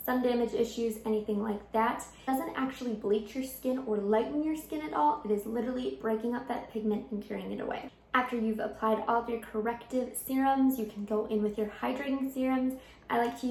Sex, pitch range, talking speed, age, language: female, 210-245 Hz, 215 wpm, 20-39, English